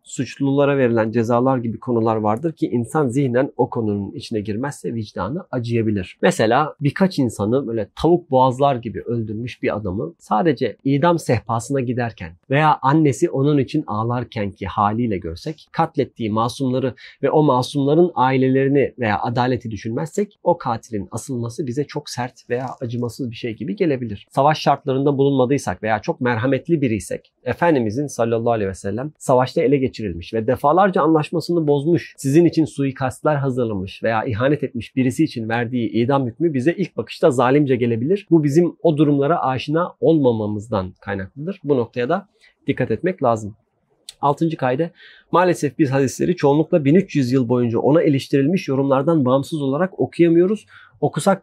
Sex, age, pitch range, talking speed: male, 40-59, 115-155 Hz, 145 wpm